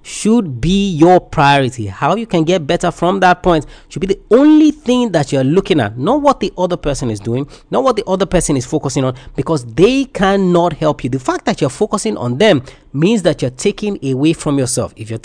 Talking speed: 225 wpm